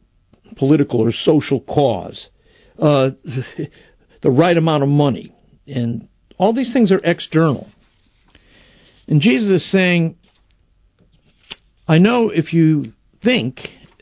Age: 60-79